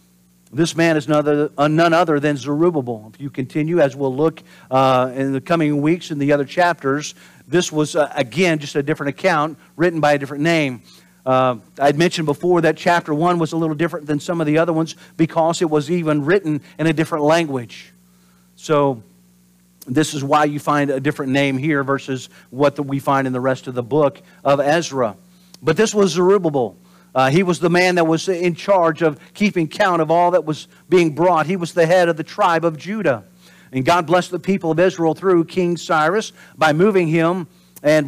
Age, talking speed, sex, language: 50-69, 200 wpm, male, English